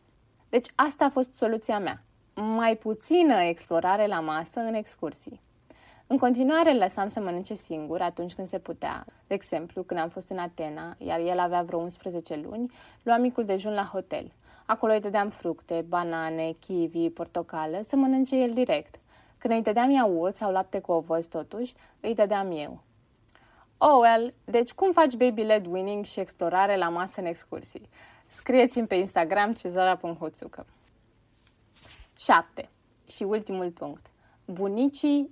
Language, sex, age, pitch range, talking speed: Romanian, female, 20-39, 170-225 Hz, 150 wpm